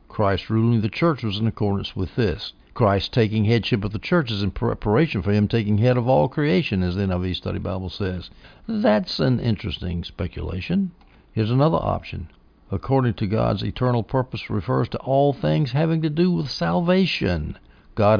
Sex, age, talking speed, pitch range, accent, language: male, 60-79, 175 wpm, 105-145 Hz, American, English